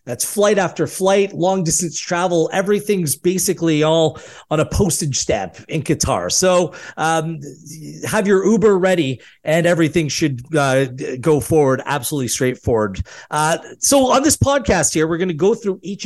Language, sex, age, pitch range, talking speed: English, male, 30-49, 145-185 Hz, 155 wpm